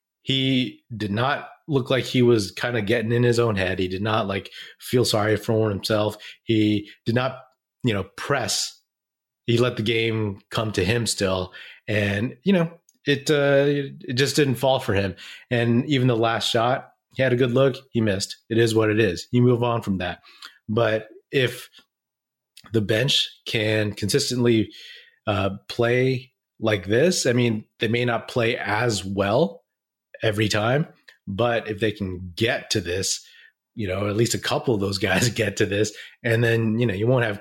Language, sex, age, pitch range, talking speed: English, male, 30-49, 105-125 Hz, 185 wpm